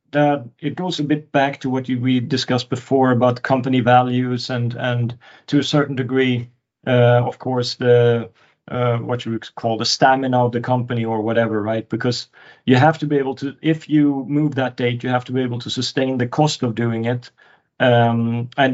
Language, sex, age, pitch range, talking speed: English, male, 40-59, 120-135 Hz, 205 wpm